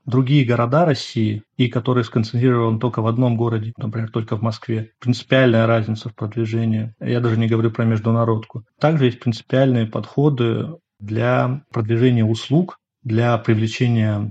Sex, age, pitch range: male, 30-49, 115-130 Hz